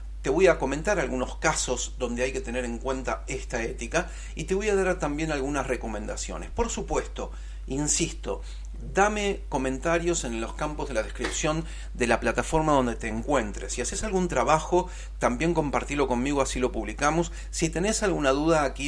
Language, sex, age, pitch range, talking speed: Spanish, male, 40-59, 120-165 Hz, 170 wpm